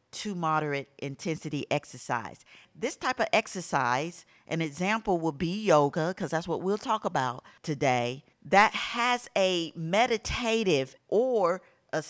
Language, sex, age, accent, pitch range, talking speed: English, female, 50-69, American, 155-220 Hz, 130 wpm